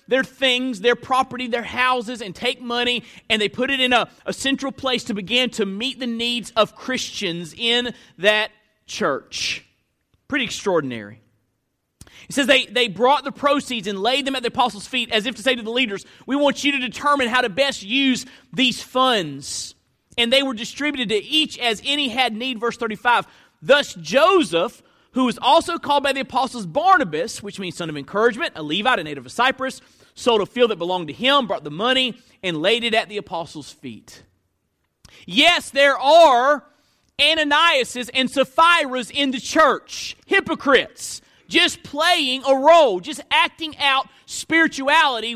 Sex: male